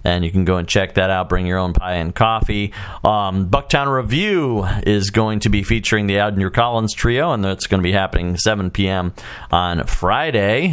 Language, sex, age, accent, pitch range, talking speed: English, male, 40-59, American, 95-120 Hz, 200 wpm